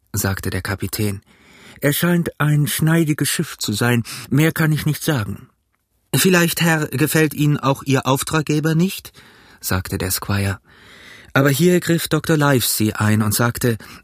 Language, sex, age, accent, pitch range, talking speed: German, male, 40-59, German, 115-155 Hz, 145 wpm